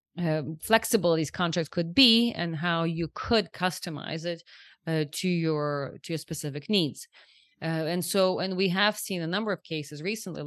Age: 30-49